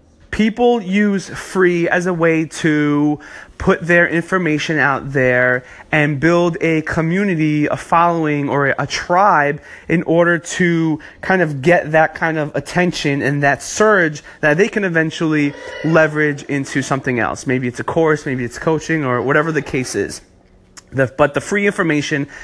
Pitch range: 140-185 Hz